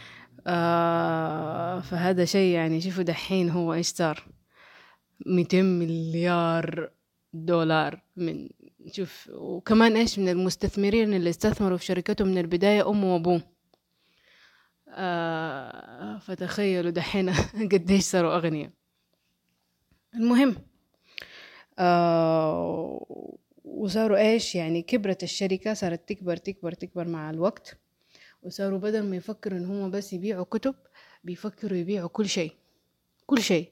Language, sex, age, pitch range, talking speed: Arabic, female, 20-39, 170-205 Hz, 105 wpm